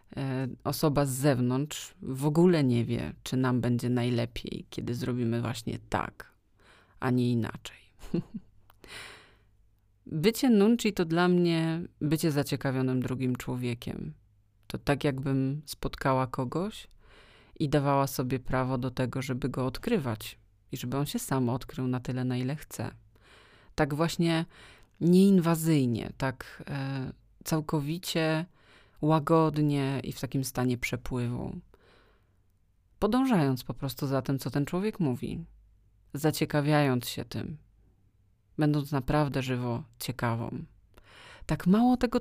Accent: native